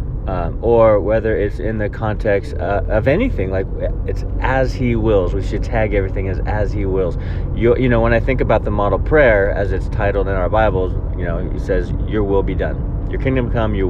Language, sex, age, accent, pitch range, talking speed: English, male, 30-49, American, 90-115 Hz, 220 wpm